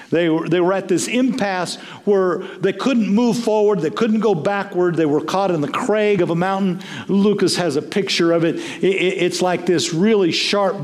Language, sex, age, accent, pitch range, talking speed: English, male, 50-69, American, 165-200 Hz, 210 wpm